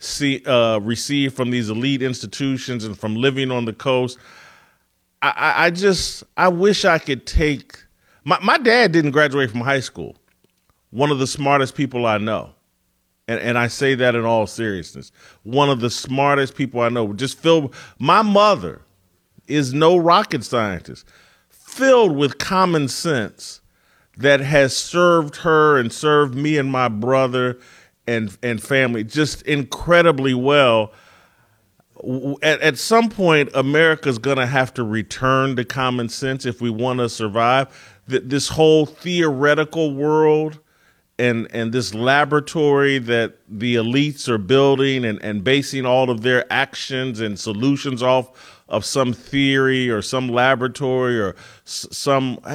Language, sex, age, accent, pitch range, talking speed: English, male, 40-59, American, 120-150 Hz, 145 wpm